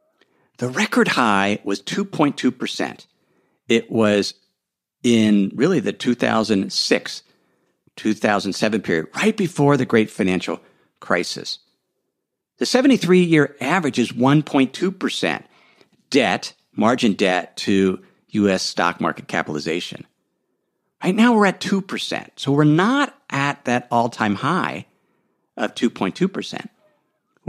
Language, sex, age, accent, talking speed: English, male, 50-69, American, 100 wpm